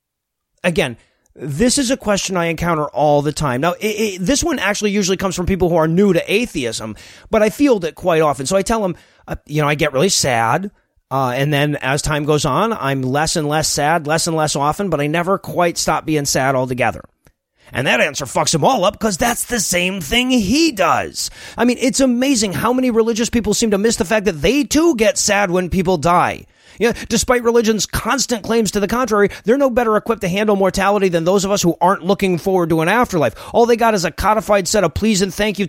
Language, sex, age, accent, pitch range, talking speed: English, male, 30-49, American, 170-225 Hz, 230 wpm